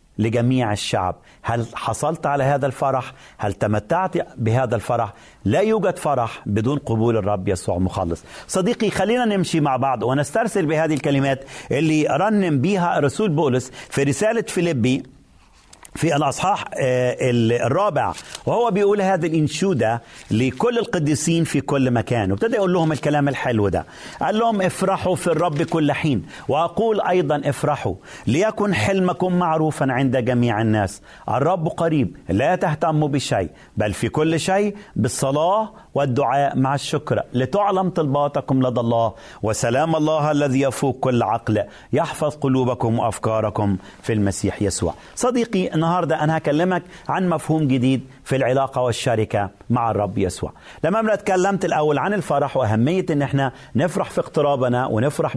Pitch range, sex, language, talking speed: 120-175 Hz, male, Arabic, 135 wpm